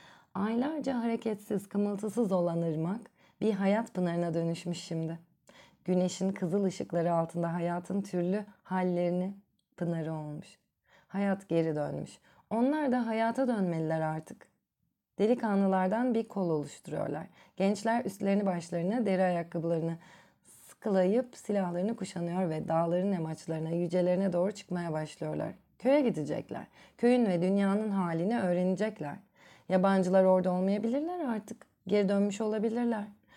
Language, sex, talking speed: Turkish, female, 110 wpm